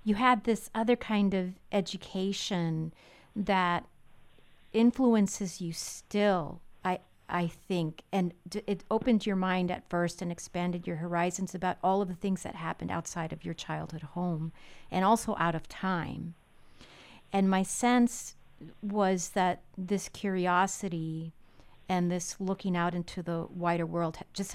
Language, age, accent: English, 40-59, American